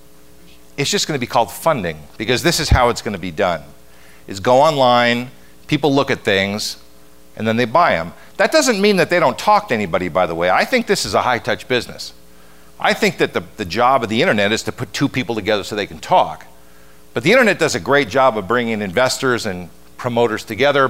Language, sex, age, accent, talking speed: English, male, 50-69, American, 225 wpm